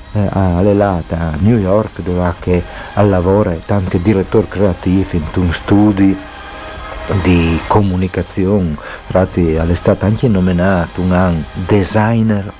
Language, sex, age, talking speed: Italian, male, 50-69, 115 wpm